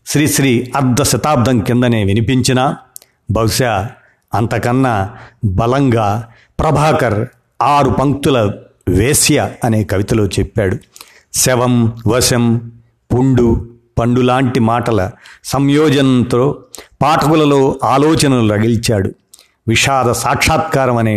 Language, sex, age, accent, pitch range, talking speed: Telugu, male, 50-69, native, 115-140 Hz, 75 wpm